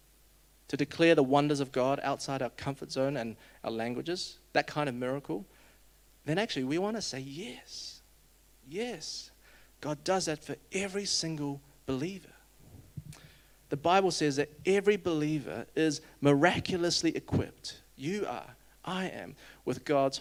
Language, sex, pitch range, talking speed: English, male, 125-160 Hz, 140 wpm